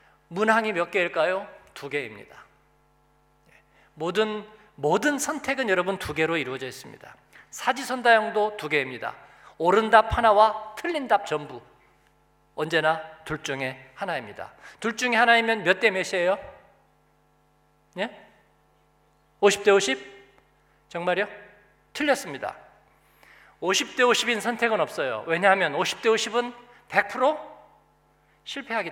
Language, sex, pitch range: Korean, male, 170-245 Hz